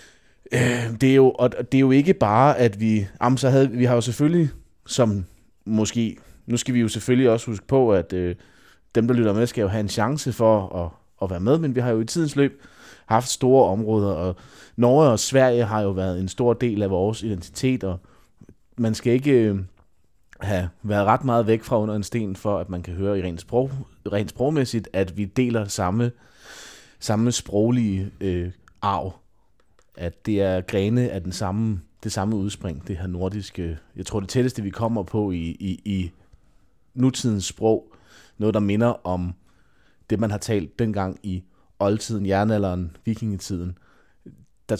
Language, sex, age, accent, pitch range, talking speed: Danish, male, 30-49, native, 95-120 Hz, 180 wpm